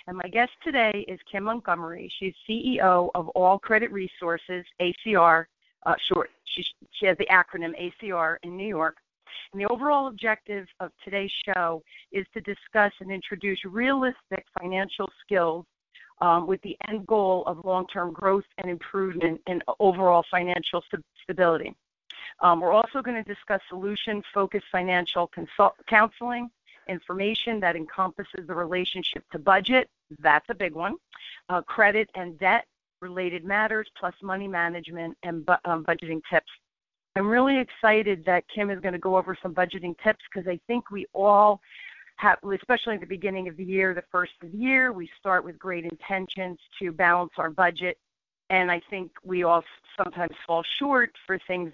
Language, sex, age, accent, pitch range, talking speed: English, female, 40-59, American, 175-205 Hz, 160 wpm